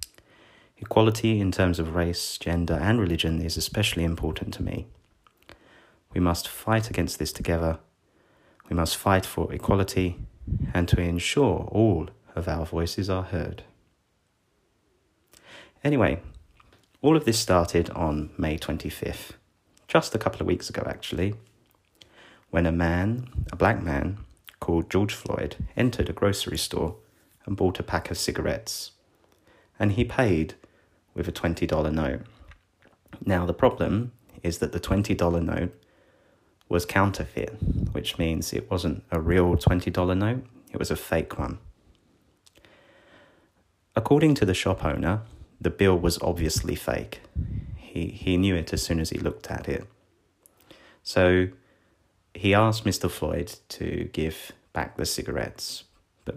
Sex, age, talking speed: male, 30-49, 135 wpm